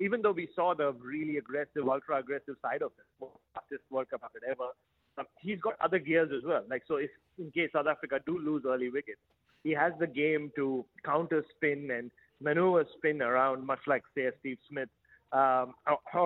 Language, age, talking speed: English, 30-49, 180 wpm